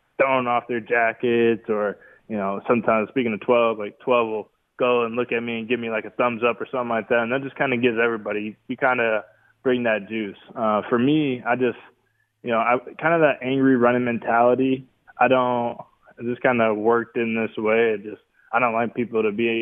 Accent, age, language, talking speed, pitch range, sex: American, 20-39, English, 225 wpm, 110-120 Hz, male